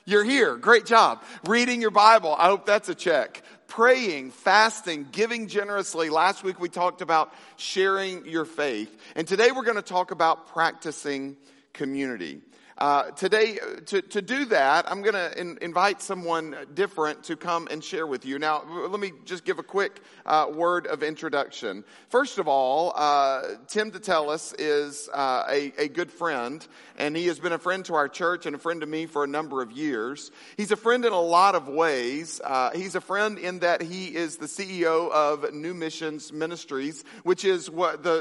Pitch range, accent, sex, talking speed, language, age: 150-195 Hz, American, male, 185 wpm, English, 50-69